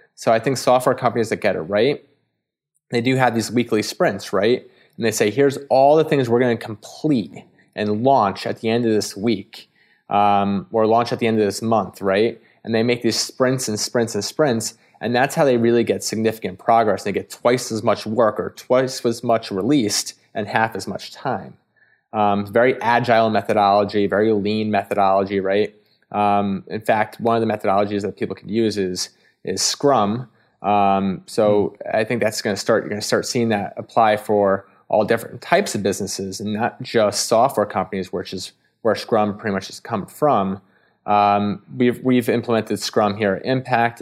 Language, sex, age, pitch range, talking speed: English, male, 20-39, 100-120 Hz, 195 wpm